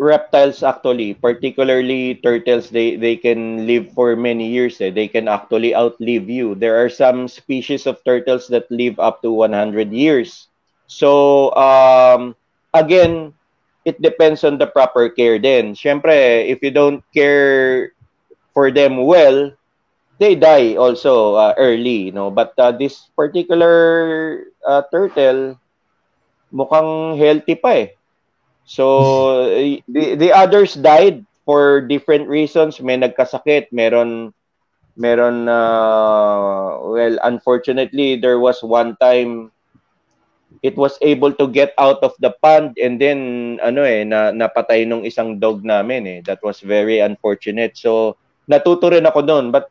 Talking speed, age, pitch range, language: 130 wpm, 30-49, 115-145 Hz, English